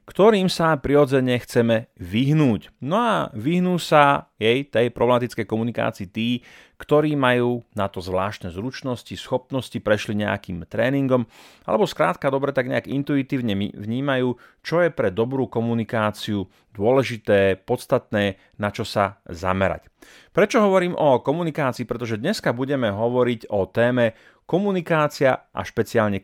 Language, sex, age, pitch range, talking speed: Slovak, male, 30-49, 105-130 Hz, 125 wpm